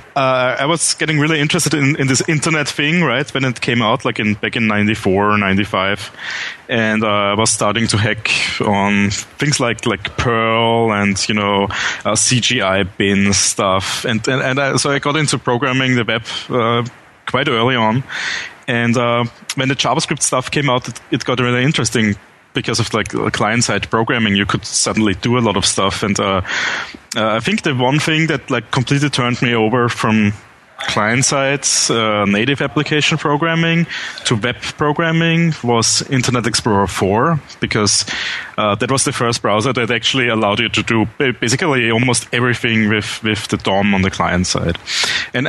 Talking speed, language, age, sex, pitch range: 175 wpm, English, 20-39, male, 110-130 Hz